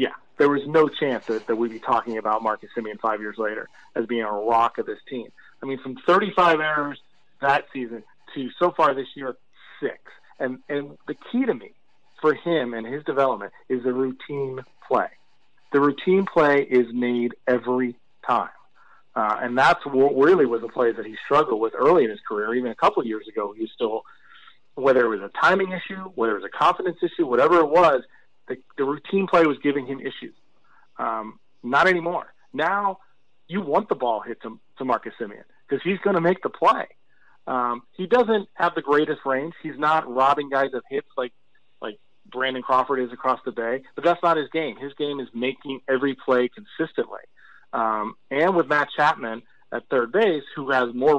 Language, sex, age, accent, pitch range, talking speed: English, male, 40-59, American, 125-165 Hz, 200 wpm